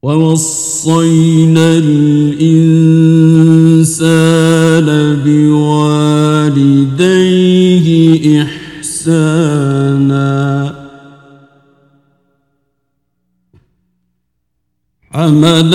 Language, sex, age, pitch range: Arabic, male, 50-69, 150-185 Hz